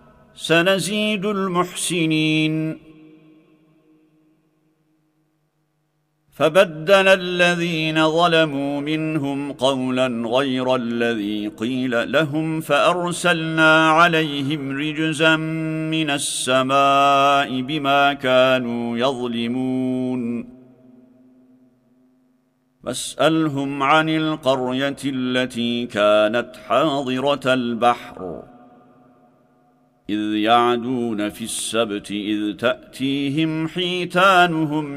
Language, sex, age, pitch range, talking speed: Turkish, male, 50-69, 125-160 Hz, 55 wpm